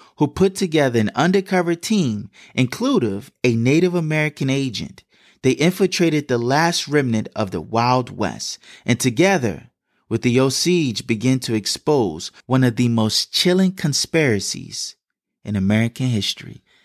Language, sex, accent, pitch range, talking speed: English, male, American, 105-140 Hz, 130 wpm